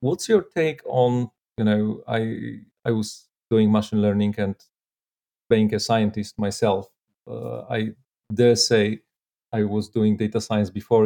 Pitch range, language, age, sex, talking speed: 100-120 Hz, English, 40-59, male, 145 wpm